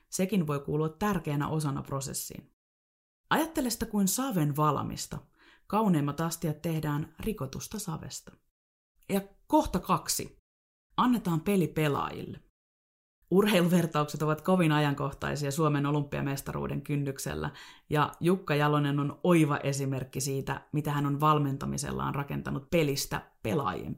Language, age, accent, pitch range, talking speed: Finnish, 30-49, native, 140-185 Hz, 110 wpm